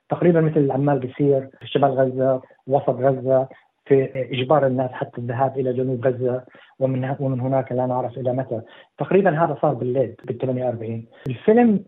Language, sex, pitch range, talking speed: Arabic, male, 135-175 Hz, 145 wpm